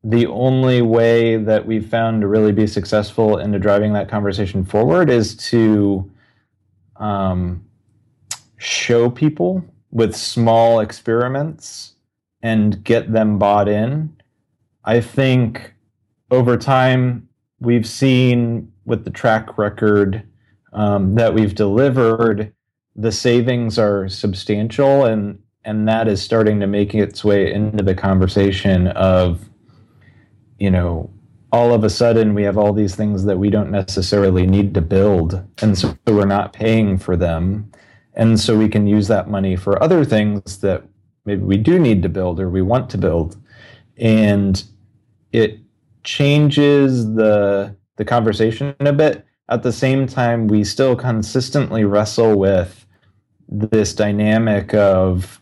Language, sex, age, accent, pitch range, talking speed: English, male, 30-49, American, 100-115 Hz, 135 wpm